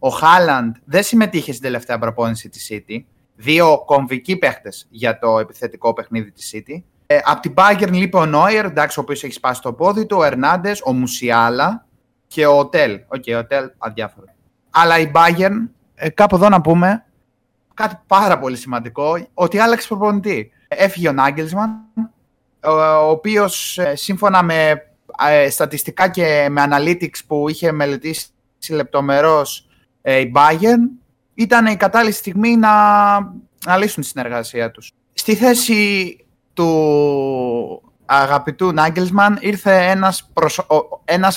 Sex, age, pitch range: male, 20-39, 130-190 Hz